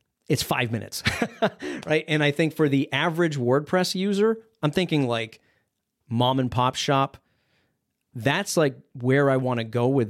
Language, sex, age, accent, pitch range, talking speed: English, male, 40-59, American, 120-160 Hz, 160 wpm